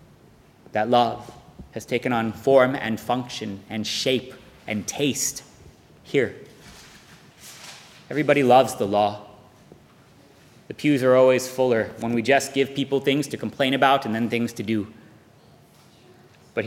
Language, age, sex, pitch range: English, 30-49, male, 110-125 Hz